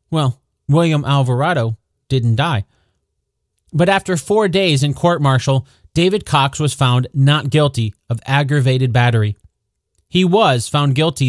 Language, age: English, 30-49